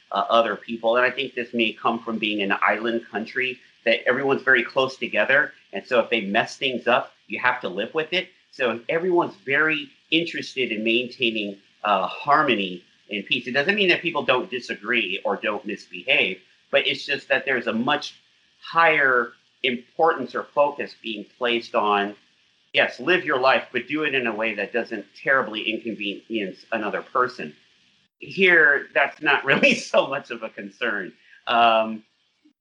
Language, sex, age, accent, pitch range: Japanese, male, 40-59, American, 105-135 Hz